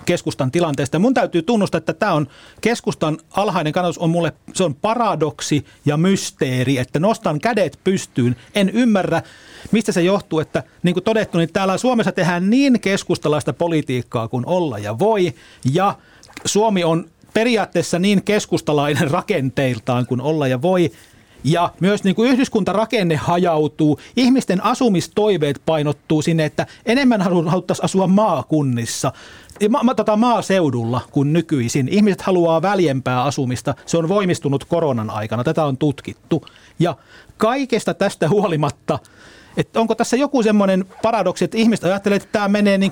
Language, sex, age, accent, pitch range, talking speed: Finnish, male, 40-59, native, 150-205 Hz, 135 wpm